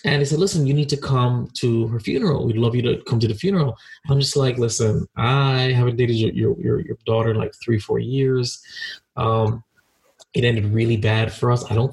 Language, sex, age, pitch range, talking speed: English, male, 20-39, 115-145 Hz, 225 wpm